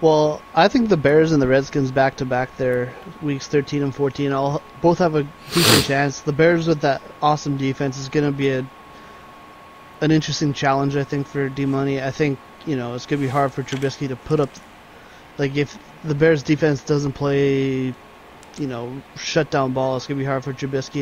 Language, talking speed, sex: English, 210 wpm, male